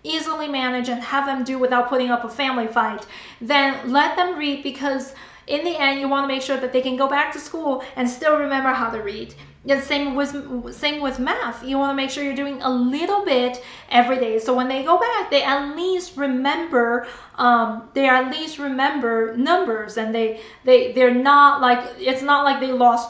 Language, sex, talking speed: English, female, 215 wpm